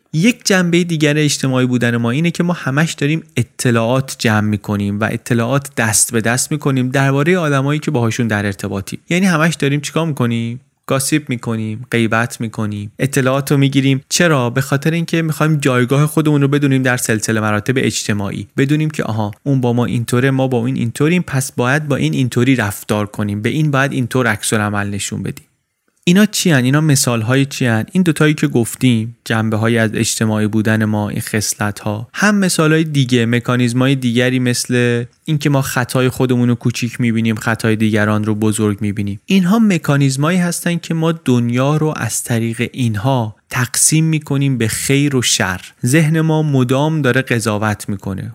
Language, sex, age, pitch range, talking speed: Persian, male, 30-49, 115-150 Hz, 175 wpm